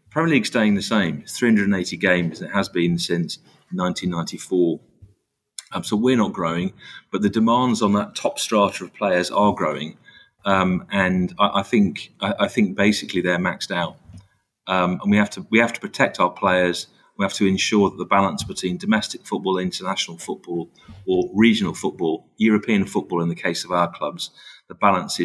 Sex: male